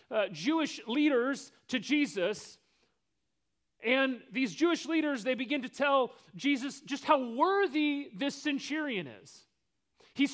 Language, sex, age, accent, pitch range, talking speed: English, male, 30-49, American, 190-290 Hz, 120 wpm